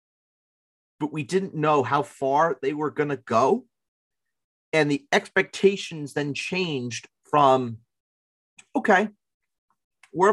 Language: English